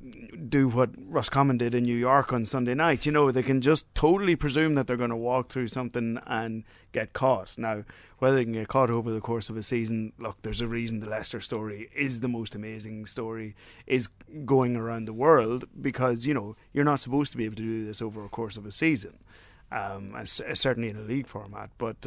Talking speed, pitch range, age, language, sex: 225 wpm, 110-140 Hz, 30-49, English, male